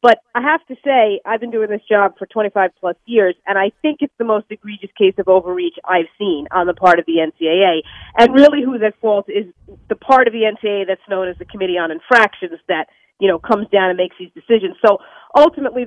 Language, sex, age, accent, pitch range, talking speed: English, female, 40-59, American, 195-245 Hz, 225 wpm